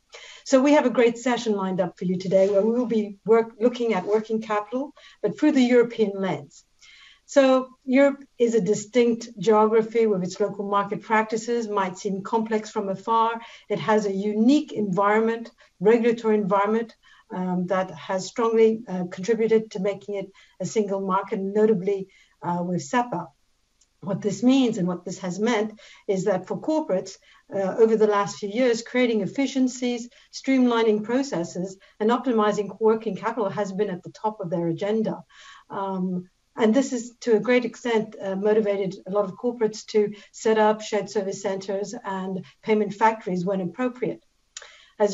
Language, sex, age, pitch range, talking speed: English, female, 60-79, 195-230 Hz, 165 wpm